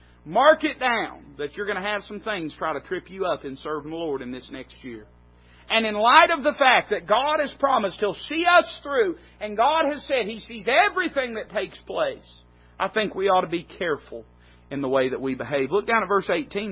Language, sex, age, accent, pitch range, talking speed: English, male, 40-59, American, 165-220 Hz, 235 wpm